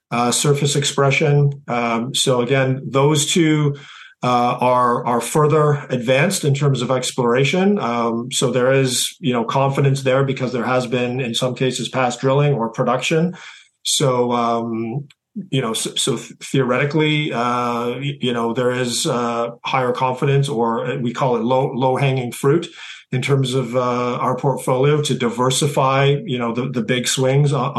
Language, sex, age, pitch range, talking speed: English, male, 40-59, 120-140 Hz, 160 wpm